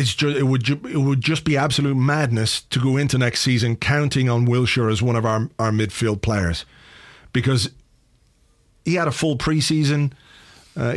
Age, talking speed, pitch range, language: 40-59, 175 wpm, 115-140 Hz, English